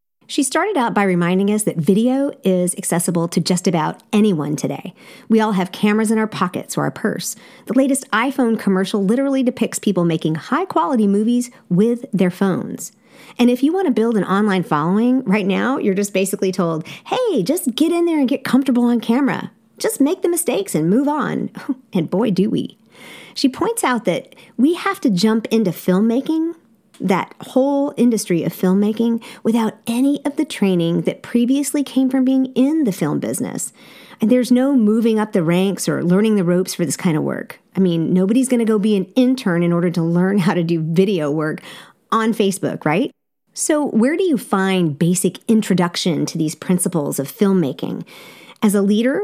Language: English